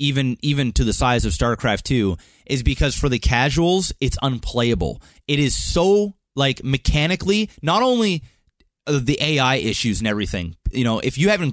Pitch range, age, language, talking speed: 115-145 Hz, 30-49, English, 165 wpm